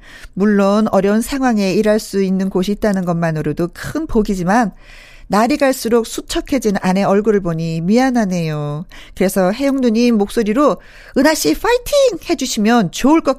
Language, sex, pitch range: Korean, female, 180-290 Hz